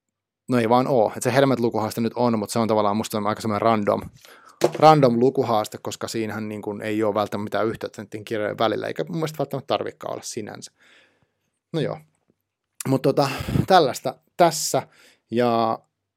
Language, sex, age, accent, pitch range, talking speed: Finnish, male, 30-49, native, 105-130 Hz, 155 wpm